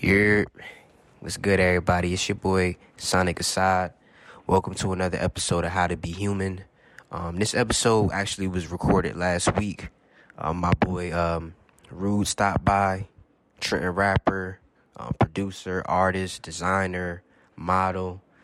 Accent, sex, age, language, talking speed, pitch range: American, male, 20-39, English, 130 wpm, 85-100 Hz